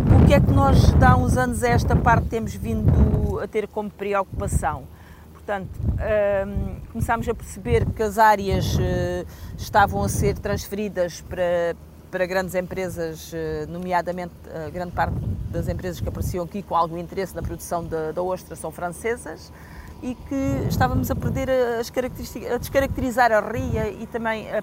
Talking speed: 150 wpm